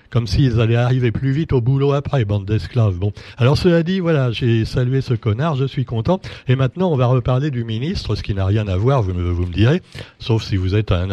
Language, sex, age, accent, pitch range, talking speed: French, male, 60-79, French, 110-140 Hz, 255 wpm